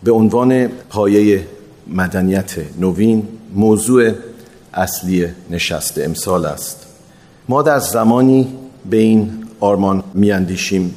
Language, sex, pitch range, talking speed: Persian, male, 95-125 Hz, 95 wpm